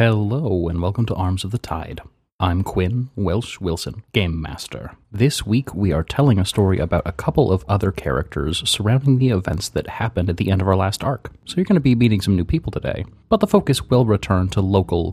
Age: 30-49